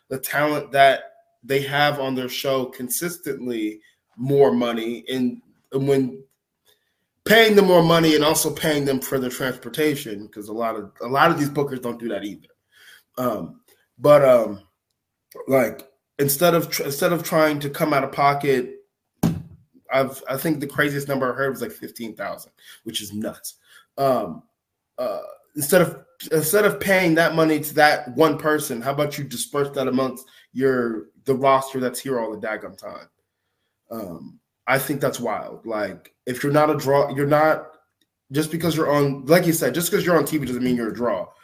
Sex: male